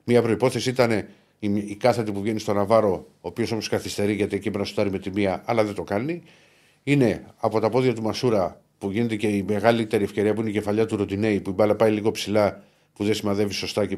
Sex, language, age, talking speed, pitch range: male, Greek, 50-69, 210 wpm, 105-135 Hz